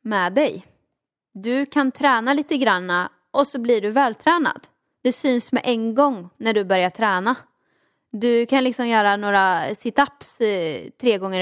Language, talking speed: Swedish, 150 wpm